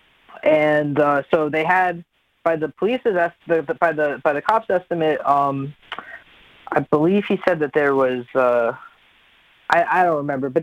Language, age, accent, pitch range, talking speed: English, 20-39, American, 135-165 Hz, 165 wpm